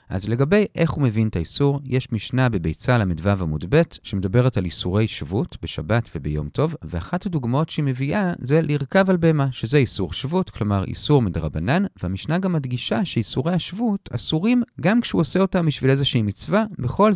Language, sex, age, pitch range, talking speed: Hebrew, male, 40-59, 105-175 Hz, 165 wpm